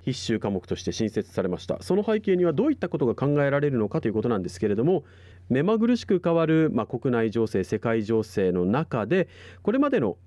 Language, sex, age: Japanese, male, 40-59